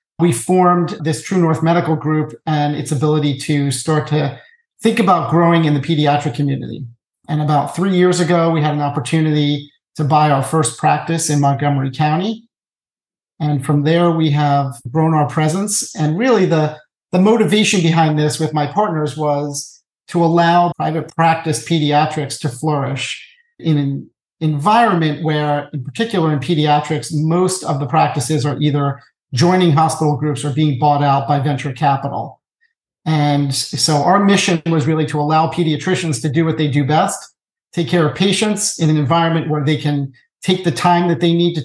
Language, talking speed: English, 170 wpm